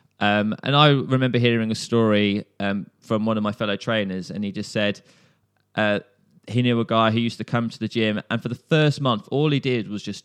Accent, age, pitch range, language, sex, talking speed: British, 20-39, 100-125 Hz, English, male, 235 wpm